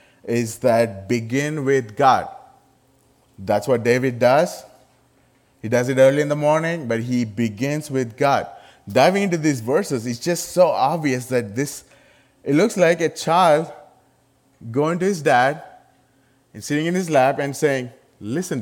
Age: 30-49